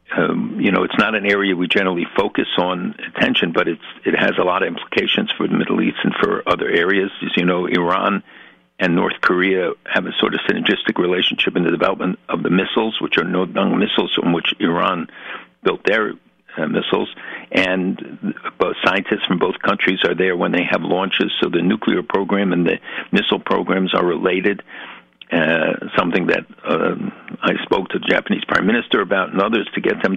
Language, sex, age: English, male, 60-79